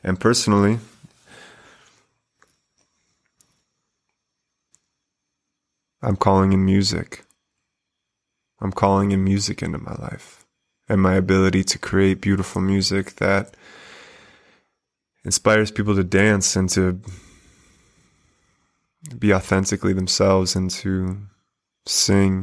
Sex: male